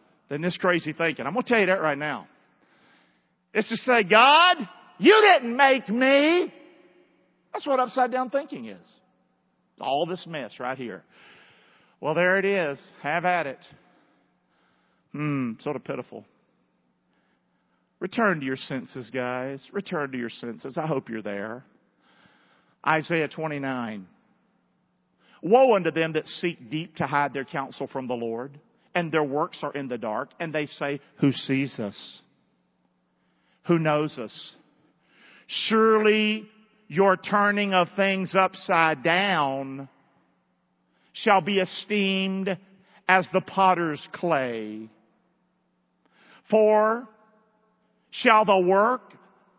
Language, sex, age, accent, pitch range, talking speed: English, male, 50-69, American, 145-225 Hz, 125 wpm